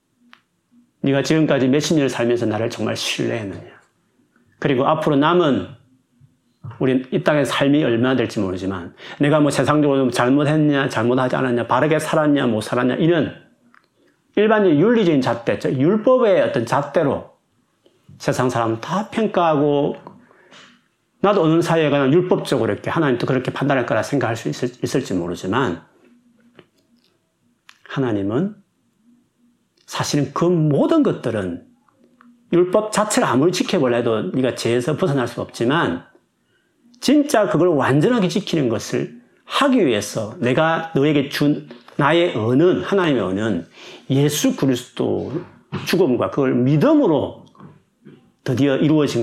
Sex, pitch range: male, 125-195 Hz